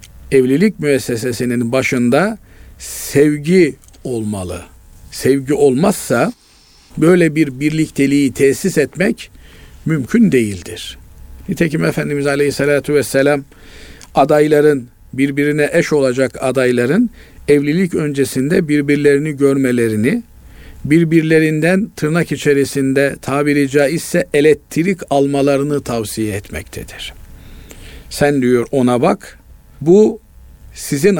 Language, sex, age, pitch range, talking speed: Turkish, male, 50-69, 125-160 Hz, 80 wpm